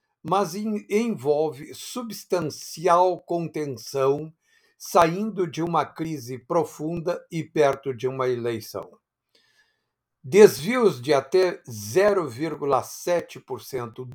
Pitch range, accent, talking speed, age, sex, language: 140-185 Hz, Brazilian, 75 wpm, 60-79, male, Portuguese